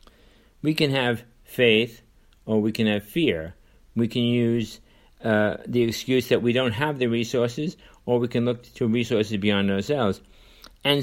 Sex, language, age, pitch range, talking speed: male, English, 60-79, 100-125 Hz, 165 wpm